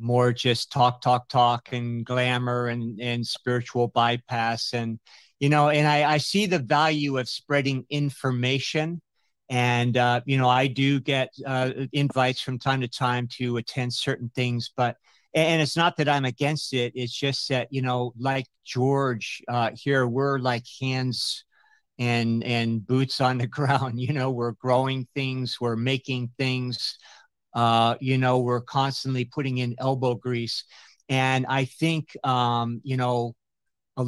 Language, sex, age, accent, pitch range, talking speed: English, male, 50-69, American, 120-135 Hz, 160 wpm